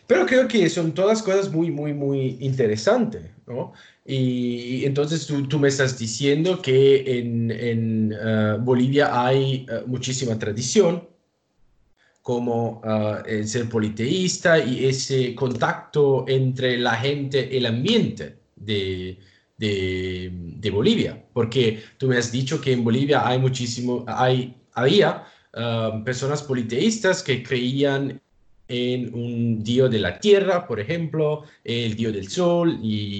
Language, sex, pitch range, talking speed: Italian, male, 110-140 Hz, 135 wpm